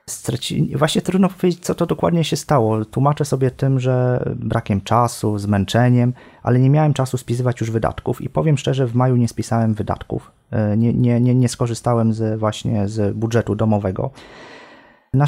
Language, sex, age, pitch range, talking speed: Polish, male, 30-49, 110-130 Hz, 155 wpm